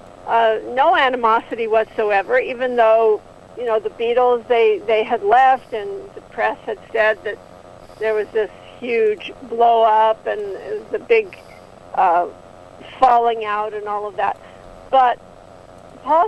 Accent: American